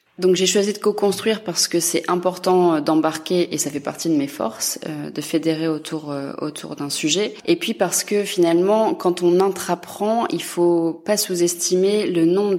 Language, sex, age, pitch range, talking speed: French, female, 20-39, 150-175 Hz, 175 wpm